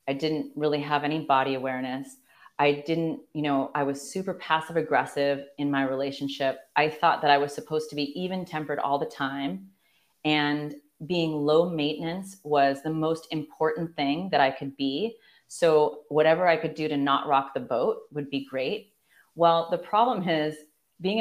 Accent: American